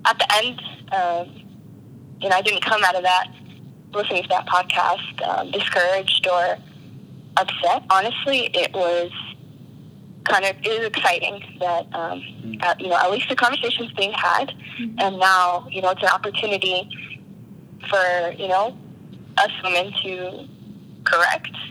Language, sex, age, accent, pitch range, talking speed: English, female, 20-39, American, 175-205 Hz, 140 wpm